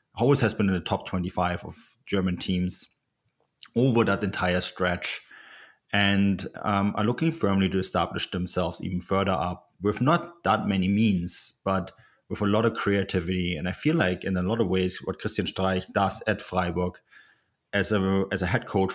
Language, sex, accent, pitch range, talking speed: English, male, German, 90-105 Hz, 180 wpm